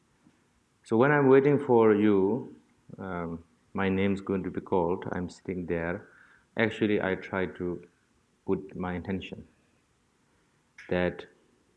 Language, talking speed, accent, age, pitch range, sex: English, 120 wpm, Indian, 50-69, 95-115 Hz, male